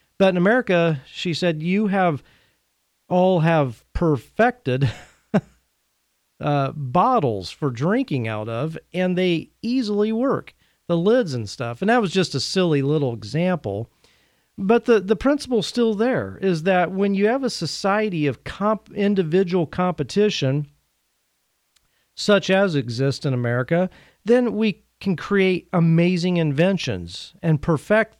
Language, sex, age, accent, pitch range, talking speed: English, male, 40-59, American, 140-195 Hz, 130 wpm